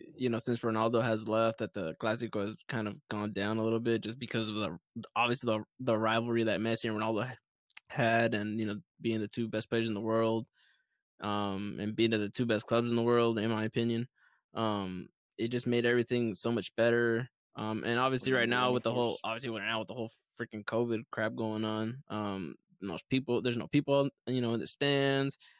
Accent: American